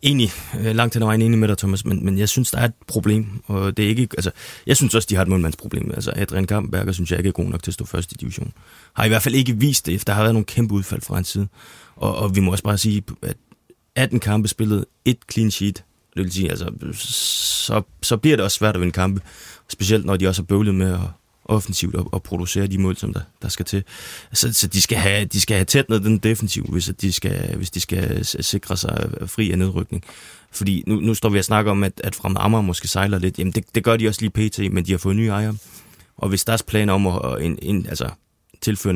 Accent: native